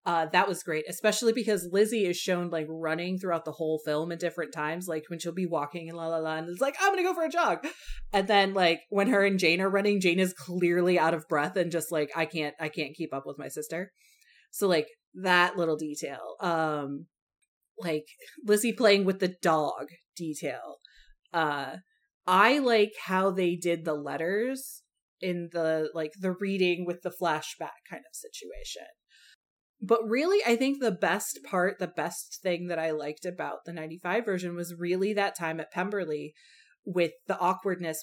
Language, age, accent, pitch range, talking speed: English, 30-49, American, 160-200 Hz, 190 wpm